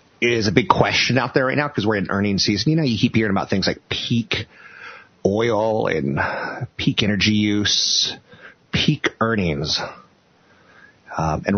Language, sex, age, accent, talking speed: English, male, 30-49, American, 160 wpm